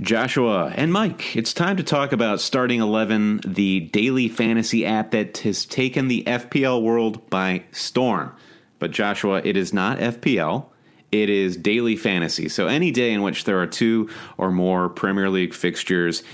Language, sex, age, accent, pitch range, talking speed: English, male, 30-49, American, 90-110 Hz, 165 wpm